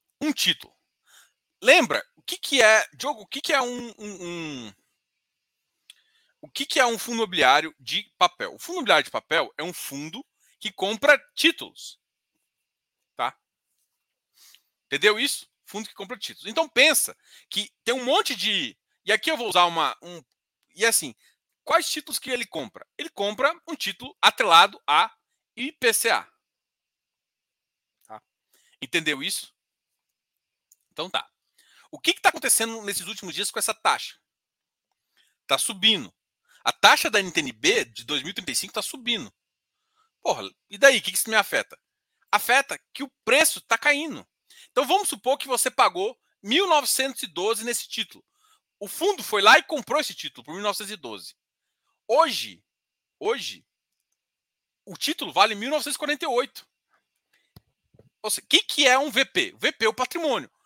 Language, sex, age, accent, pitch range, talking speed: Portuguese, male, 40-59, Brazilian, 215-315 Hz, 145 wpm